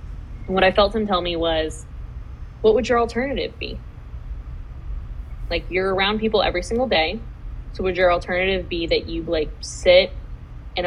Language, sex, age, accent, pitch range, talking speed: English, female, 20-39, American, 160-220 Hz, 165 wpm